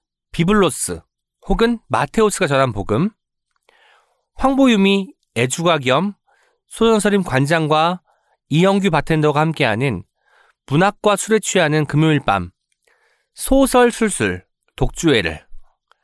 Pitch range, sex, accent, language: 140-210 Hz, male, native, Korean